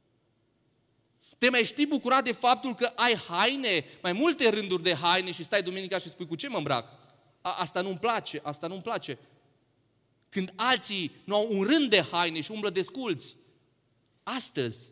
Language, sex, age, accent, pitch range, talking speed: Romanian, male, 30-49, native, 125-185 Hz, 175 wpm